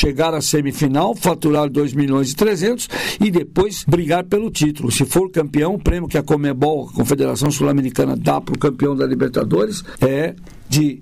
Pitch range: 150-195 Hz